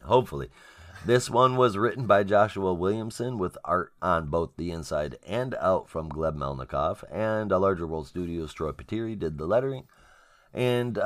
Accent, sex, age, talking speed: American, male, 30-49, 165 wpm